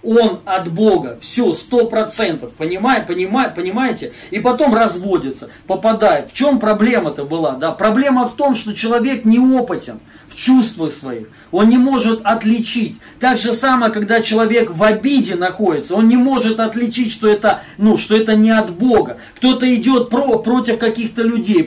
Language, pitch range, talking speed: Russian, 210-245 Hz, 155 wpm